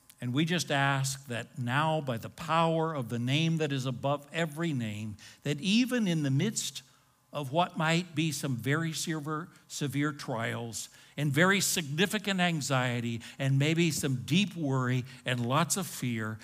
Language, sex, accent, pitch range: English, male, American, 130-170 Hz